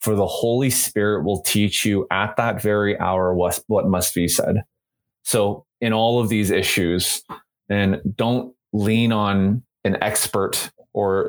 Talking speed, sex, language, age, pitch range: 155 wpm, male, English, 30-49, 95-115 Hz